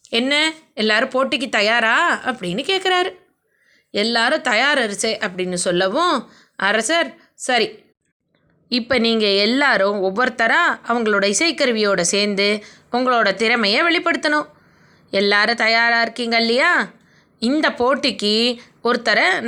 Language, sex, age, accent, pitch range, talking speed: Tamil, female, 20-39, native, 210-300 Hz, 90 wpm